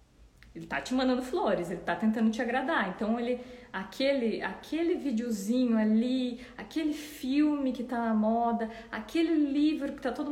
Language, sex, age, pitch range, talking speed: Portuguese, female, 20-39, 220-290 Hz, 155 wpm